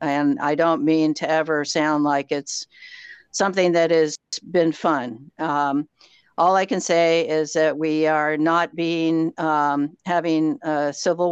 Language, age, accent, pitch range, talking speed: English, 60-79, American, 150-165 Hz, 155 wpm